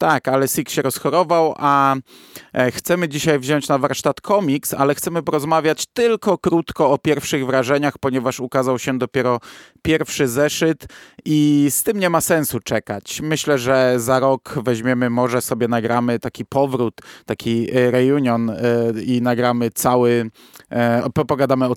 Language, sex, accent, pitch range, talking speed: Polish, male, native, 120-160 Hz, 140 wpm